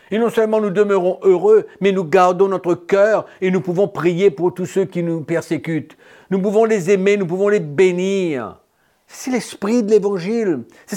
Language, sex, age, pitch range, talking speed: French, male, 50-69, 180-230 Hz, 180 wpm